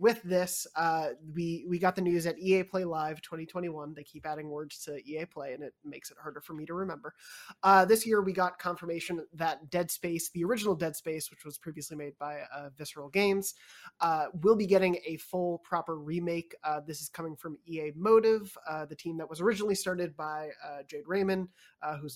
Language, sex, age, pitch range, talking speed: English, male, 20-39, 155-190 Hz, 210 wpm